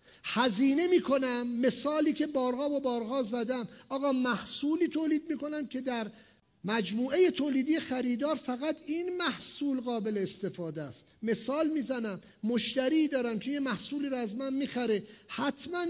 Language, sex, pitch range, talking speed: English, male, 195-265 Hz, 150 wpm